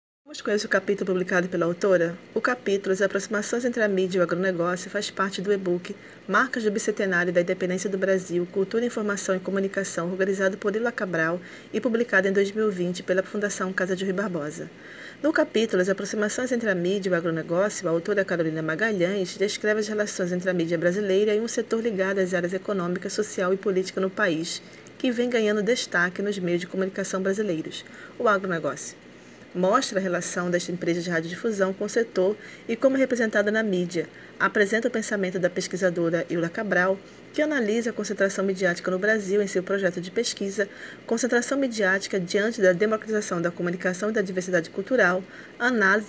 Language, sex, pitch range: Portuguese, female, 180-210 Hz